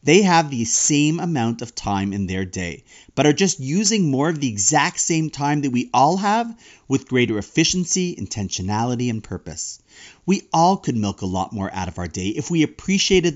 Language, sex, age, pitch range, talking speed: English, male, 40-59, 125-195 Hz, 200 wpm